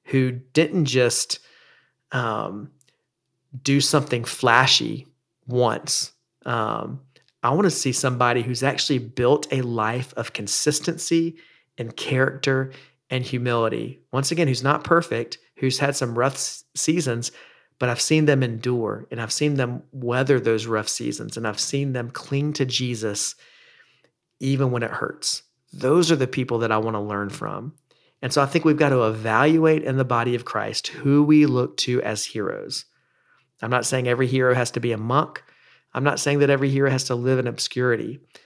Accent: American